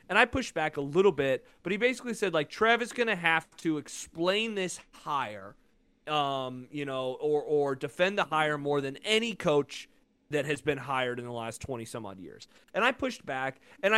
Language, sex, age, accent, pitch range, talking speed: English, male, 30-49, American, 150-215 Hz, 200 wpm